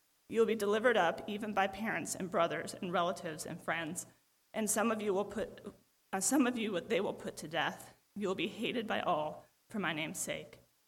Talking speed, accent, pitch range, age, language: 215 wpm, American, 185-220 Hz, 30-49, English